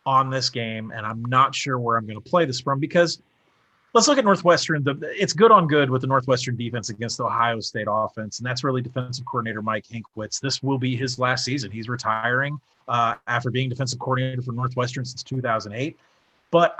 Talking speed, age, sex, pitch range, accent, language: 205 wpm, 30-49, male, 120-155 Hz, American, English